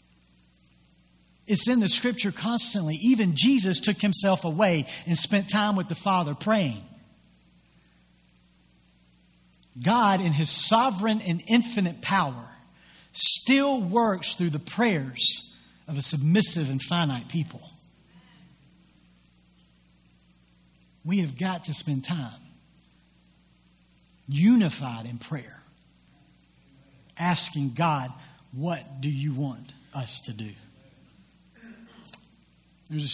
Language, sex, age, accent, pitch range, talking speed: English, male, 50-69, American, 120-175 Hz, 100 wpm